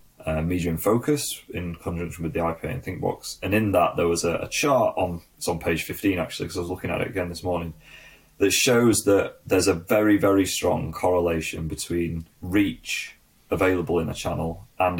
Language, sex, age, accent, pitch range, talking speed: English, male, 30-49, British, 85-100 Hz, 195 wpm